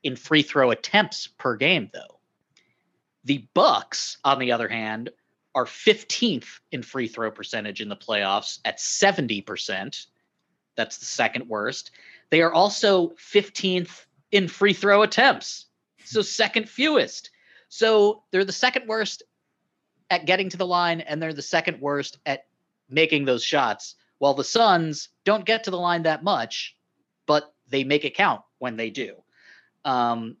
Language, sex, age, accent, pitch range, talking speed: English, male, 30-49, American, 130-200 Hz, 145 wpm